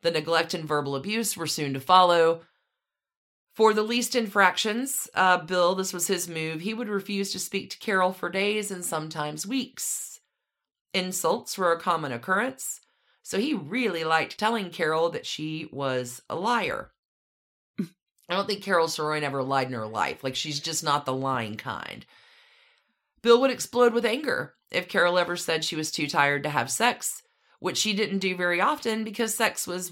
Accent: American